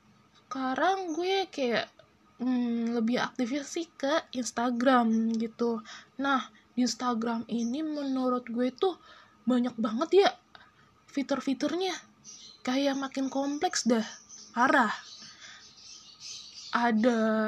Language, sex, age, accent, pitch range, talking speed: Indonesian, female, 10-29, native, 235-315 Hz, 95 wpm